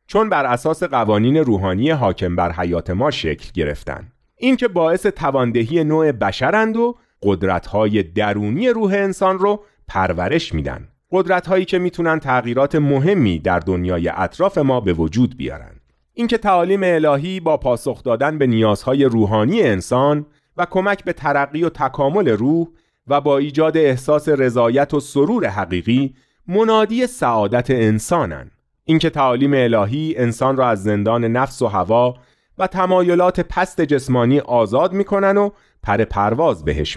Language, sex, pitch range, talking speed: Persian, male, 105-175 Hz, 140 wpm